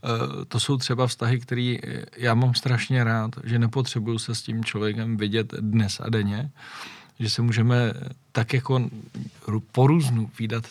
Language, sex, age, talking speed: Czech, male, 40-59, 145 wpm